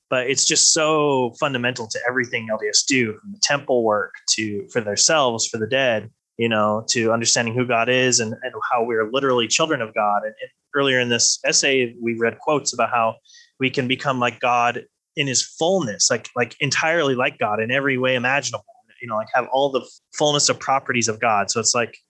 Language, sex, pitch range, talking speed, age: English, male, 115-145 Hz, 205 wpm, 20-39